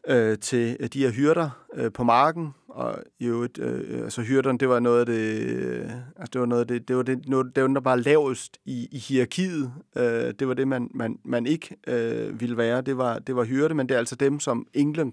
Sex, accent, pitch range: male, native, 115-145 Hz